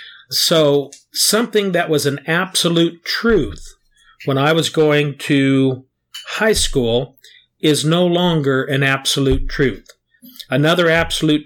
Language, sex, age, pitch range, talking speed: English, male, 50-69, 135-165 Hz, 115 wpm